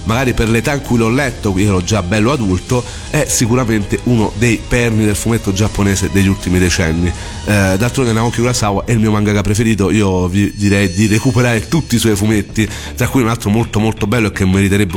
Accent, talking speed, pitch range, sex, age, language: native, 205 wpm, 100-120 Hz, male, 40-59, Italian